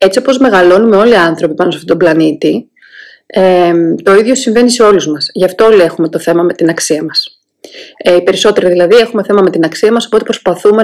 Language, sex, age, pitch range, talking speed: Greek, female, 30-49, 190-230 Hz, 220 wpm